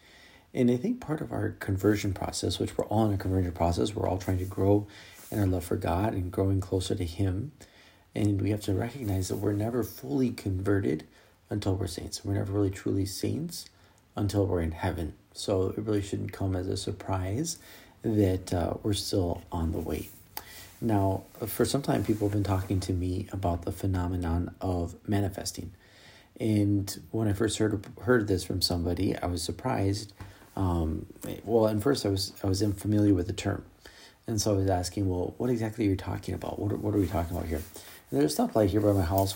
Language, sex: English, male